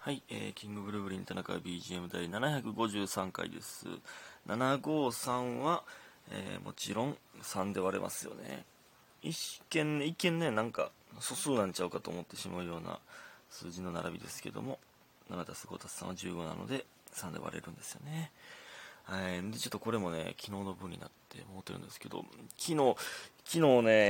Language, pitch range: Japanese, 95-155 Hz